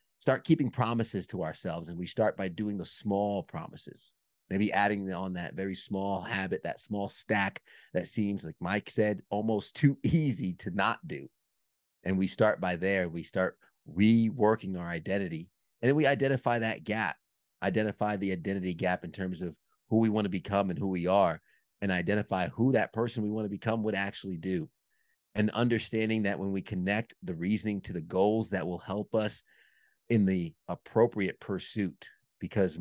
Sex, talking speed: male, 180 wpm